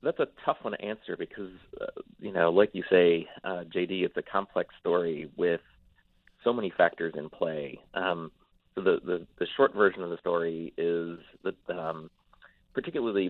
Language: English